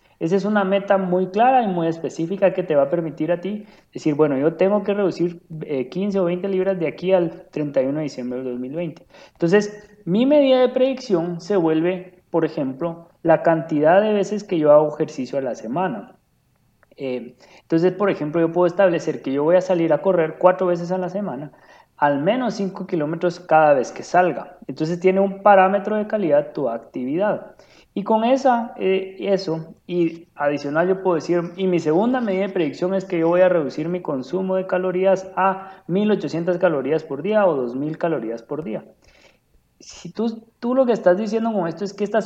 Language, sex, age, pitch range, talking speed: Spanish, male, 30-49, 160-200 Hz, 195 wpm